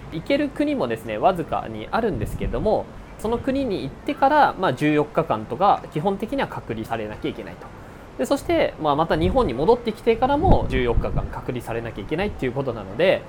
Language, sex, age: Japanese, male, 20-39